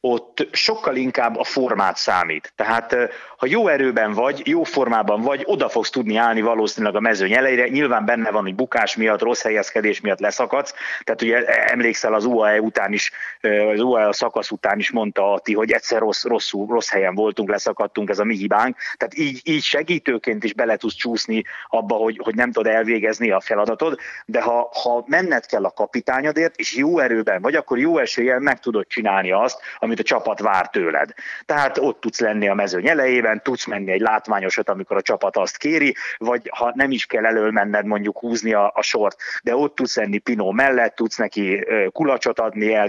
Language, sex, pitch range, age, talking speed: Hungarian, male, 105-130 Hz, 30-49, 190 wpm